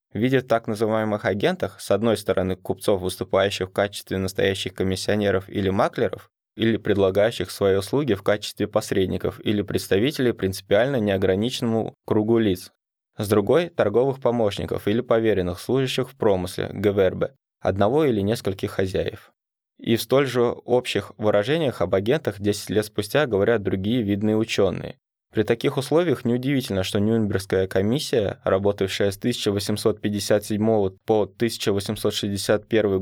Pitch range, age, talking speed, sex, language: 95-115 Hz, 20-39, 125 wpm, male, Russian